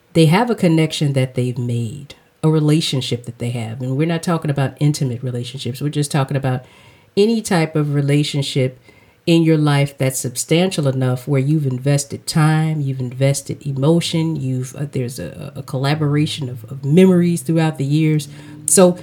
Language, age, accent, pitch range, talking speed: English, 40-59, American, 130-160 Hz, 165 wpm